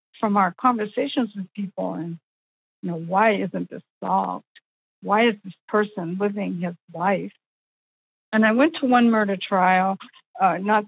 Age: 60-79